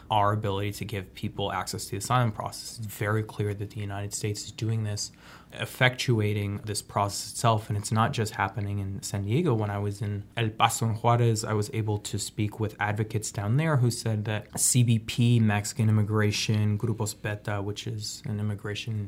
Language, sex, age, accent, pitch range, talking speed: English, male, 20-39, American, 105-115 Hz, 190 wpm